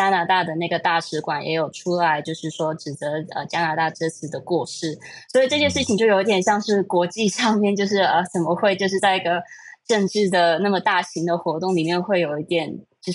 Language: Chinese